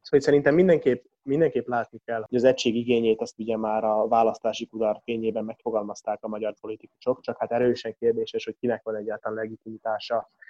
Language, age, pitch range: Hungarian, 20-39, 110-145 Hz